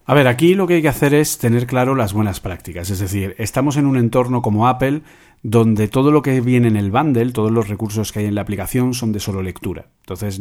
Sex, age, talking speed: male, 40-59, 250 wpm